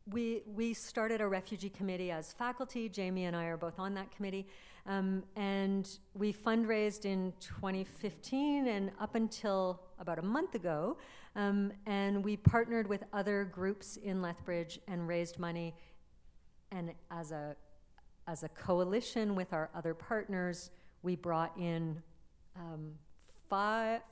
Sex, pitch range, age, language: female, 175-225 Hz, 50-69, English